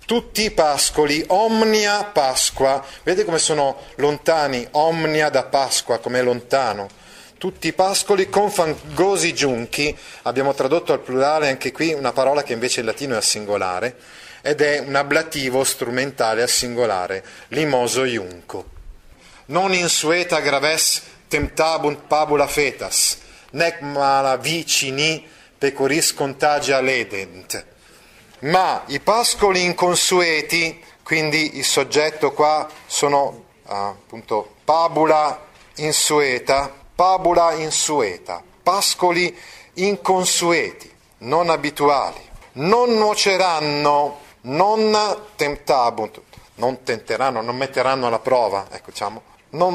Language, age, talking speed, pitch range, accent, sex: Italian, 30-49, 105 wpm, 135-170 Hz, native, male